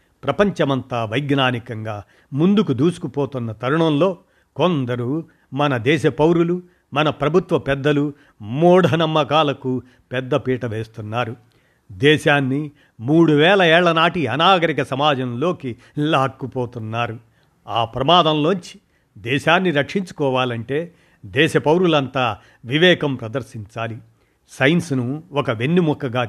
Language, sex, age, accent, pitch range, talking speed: Telugu, male, 50-69, native, 125-160 Hz, 80 wpm